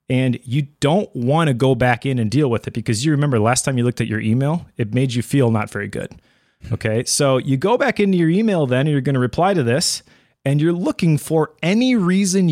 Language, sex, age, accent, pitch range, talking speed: English, male, 30-49, American, 120-155 Hz, 245 wpm